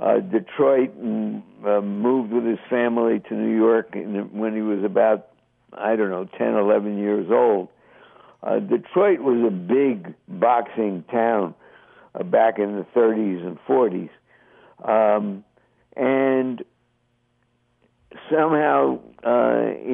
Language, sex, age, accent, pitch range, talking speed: English, male, 60-79, American, 105-140 Hz, 115 wpm